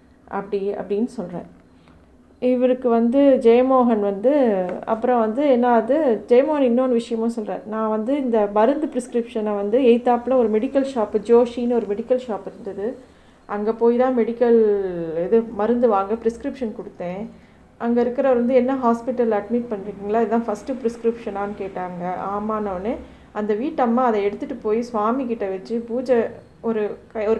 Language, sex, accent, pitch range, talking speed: Tamil, female, native, 210-250 Hz, 140 wpm